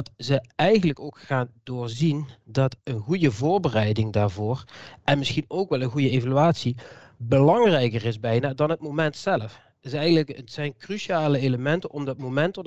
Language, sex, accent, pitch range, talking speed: Dutch, male, Dutch, 120-150 Hz, 165 wpm